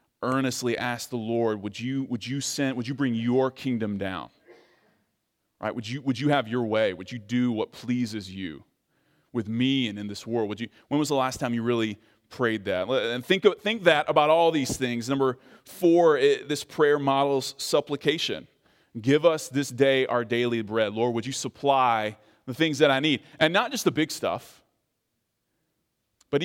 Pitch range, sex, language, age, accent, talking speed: 115-145 Hz, male, English, 30-49, American, 195 wpm